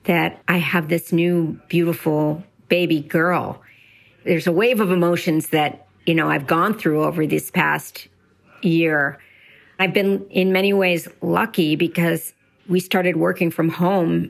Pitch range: 160-180 Hz